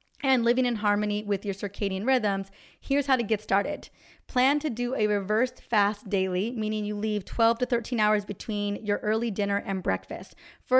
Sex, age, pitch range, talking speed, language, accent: female, 20-39, 200-250 Hz, 190 wpm, English, American